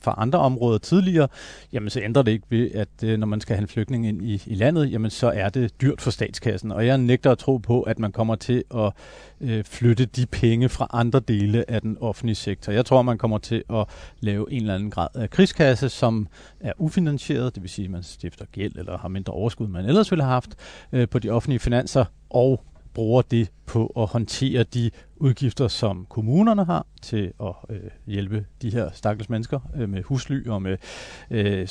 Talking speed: 210 wpm